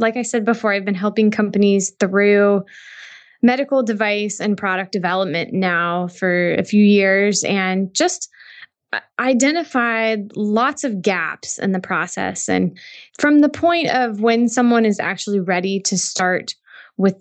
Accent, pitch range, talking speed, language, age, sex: American, 190-230 Hz, 145 wpm, English, 20-39, female